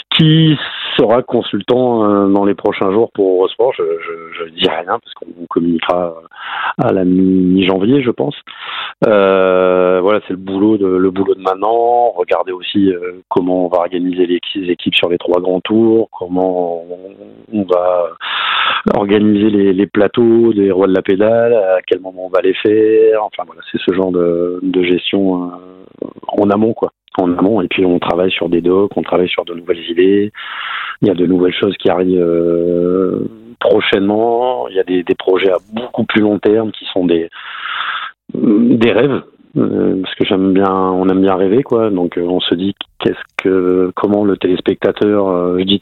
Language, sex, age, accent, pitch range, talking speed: French, male, 30-49, French, 90-105 Hz, 185 wpm